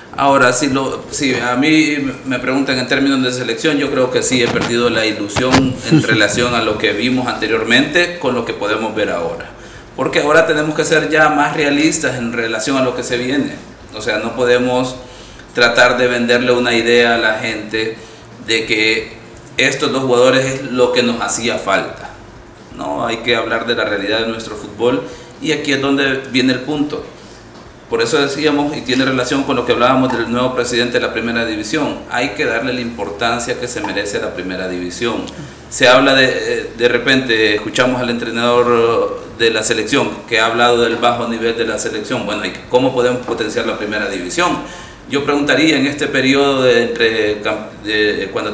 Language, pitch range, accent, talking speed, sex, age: Spanish, 115-140 Hz, Venezuelan, 185 wpm, male, 40-59